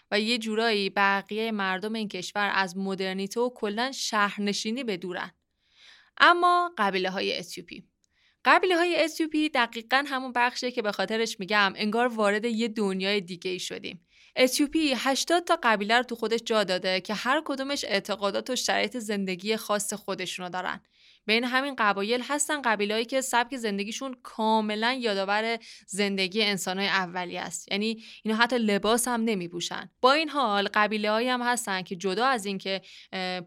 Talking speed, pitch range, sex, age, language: 155 wpm, 195-250 Hz, female, 20-39, Persian